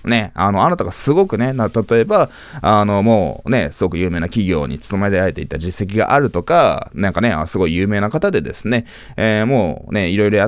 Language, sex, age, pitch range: Japanese, male, 20-39, 85-125 Hz